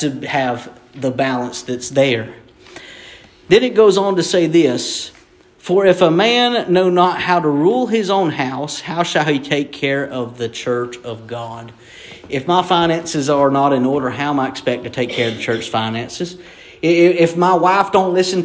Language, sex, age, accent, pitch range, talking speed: English, male, 40-59, American, 140-195 Hz, 190 wpm